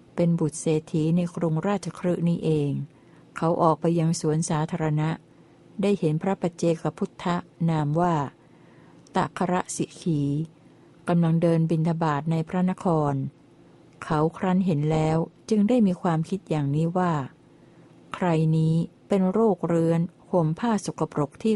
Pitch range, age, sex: 155-175 Hz, 60-79, female